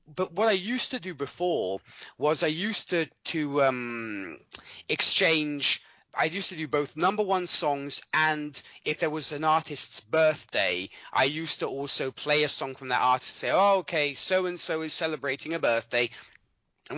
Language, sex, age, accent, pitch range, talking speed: English, male, 30-49, British, 140-185 Hz, 175 wpm